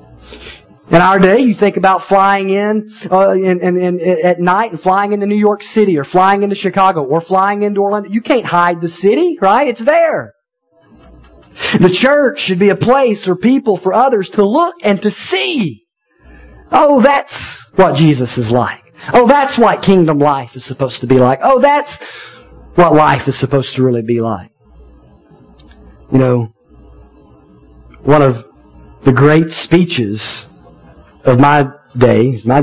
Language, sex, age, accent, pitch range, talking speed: English, male, 40-59, American, 115-190 Hz, 160 wpm